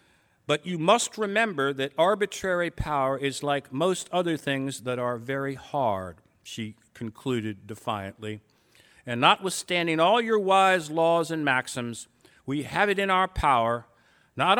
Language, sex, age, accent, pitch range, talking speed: English, male, 50-69, American, 120-155 Hz, 140 wpm